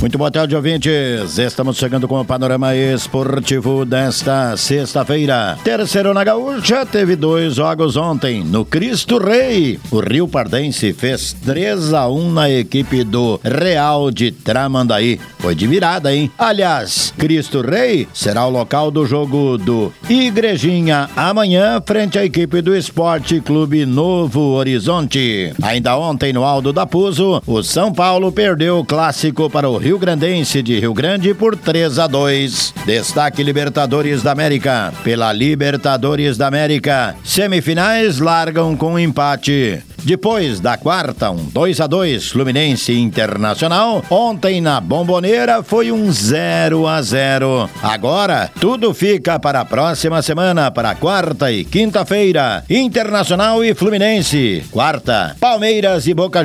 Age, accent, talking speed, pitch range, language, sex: 60-79, Brazilian, 140 wpm, 130-180 Hz, Portuguese, male